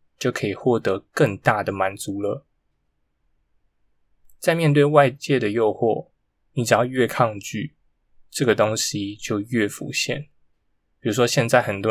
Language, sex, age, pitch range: Chinese, male, 10-29, 95-140 Hz